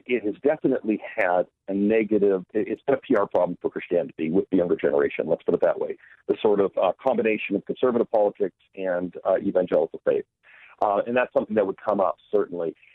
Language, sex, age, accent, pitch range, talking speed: English, male, 50-69, American, 95-125 Hz, 190 wpm